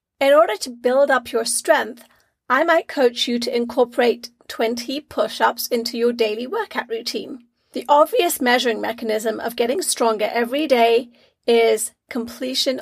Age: 30-49